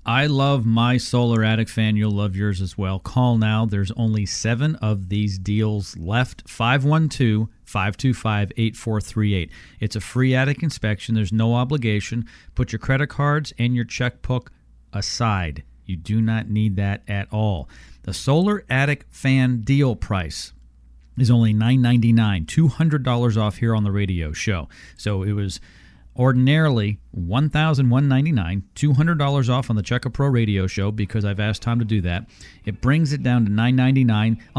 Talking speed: 145 wpm